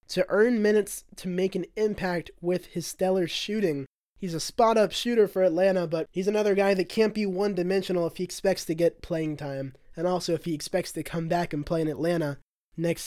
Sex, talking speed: male, 205 wpm